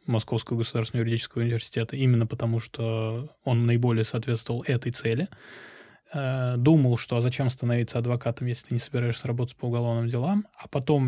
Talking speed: 145 wpm